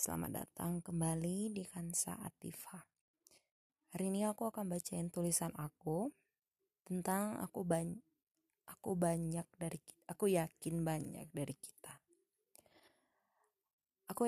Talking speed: 105 wpm